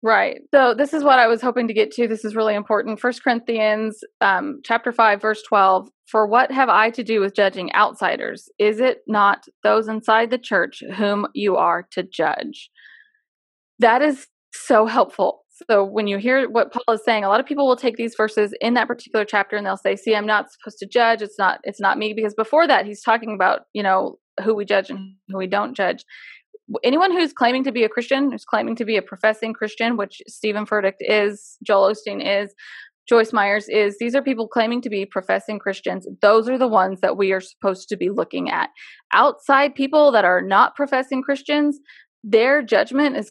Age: 20-39